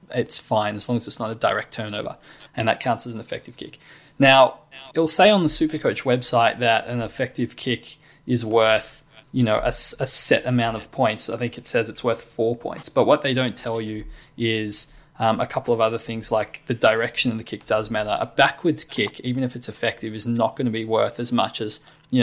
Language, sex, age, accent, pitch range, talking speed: English, male, 20-39, Australian, 110-130 Hz, 225 wpm